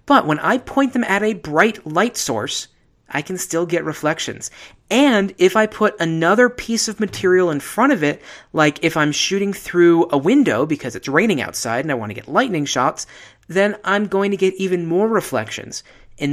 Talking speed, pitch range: 200 wpm, 140-200 Hz